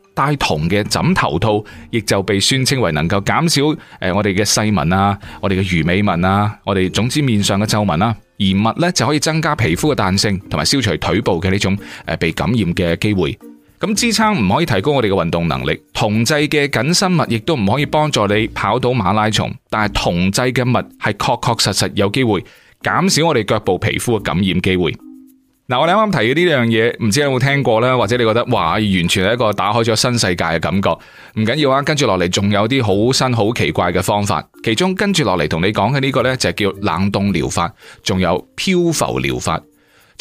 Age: 20-39